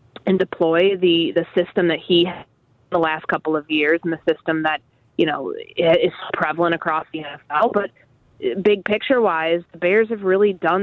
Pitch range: 165-215 Hz